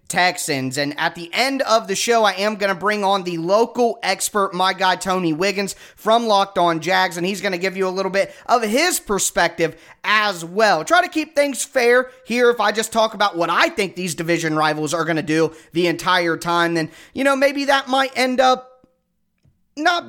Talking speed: 215 wpm